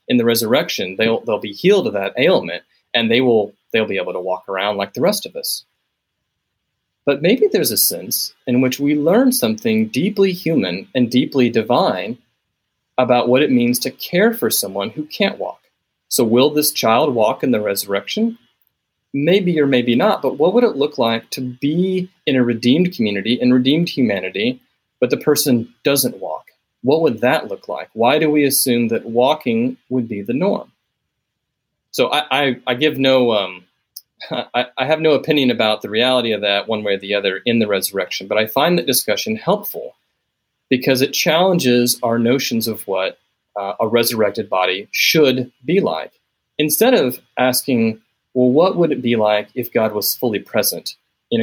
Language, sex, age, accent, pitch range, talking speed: English, male, 30-49, American, 115-170 Hz, 180 wpm